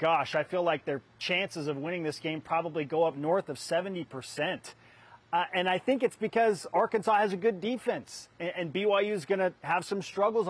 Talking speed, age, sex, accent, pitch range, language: 200 wpm, 30-49, male, American, 155-205 Hz, English